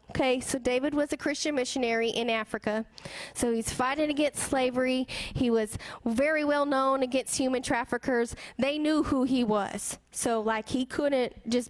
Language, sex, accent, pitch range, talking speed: English, female, American, 230-285 Hz, 165 wpm